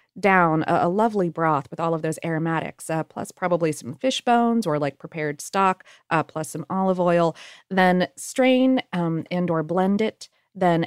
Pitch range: 165-235 Hz